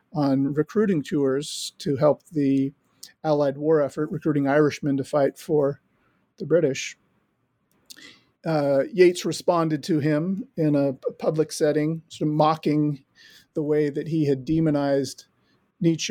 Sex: male